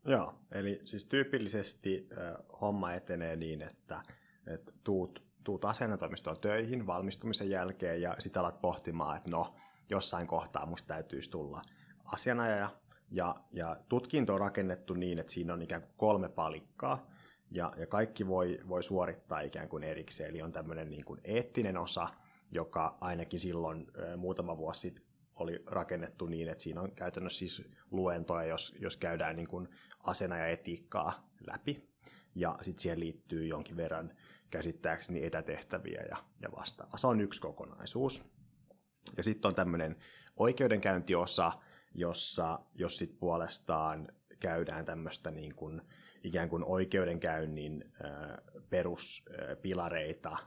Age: 30-49